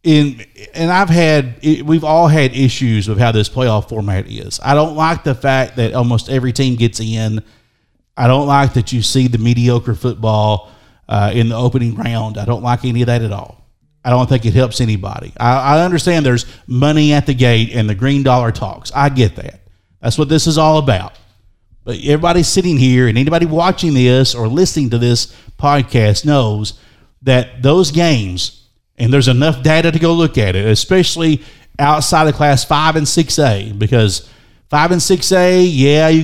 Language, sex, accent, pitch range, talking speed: English, male, American, 115-155 Hz, 185 wpm